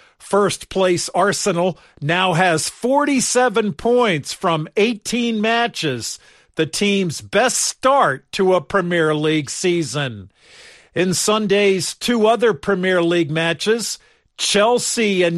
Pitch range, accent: 165-215 Hz, American